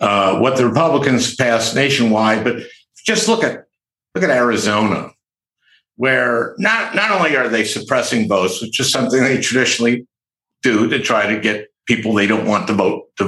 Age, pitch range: 60-79, 125-165 Hz